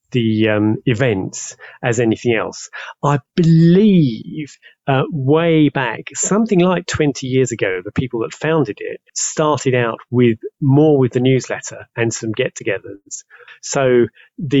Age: 30-49